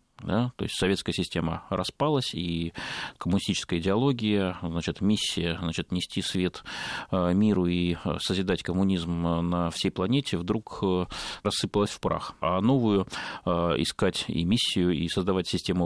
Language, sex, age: Russian, male, 30-49